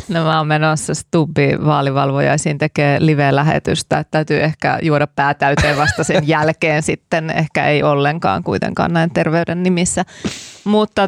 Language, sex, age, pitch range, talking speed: Finnish, female, 30-49, 155-195 Hz, 125 wpm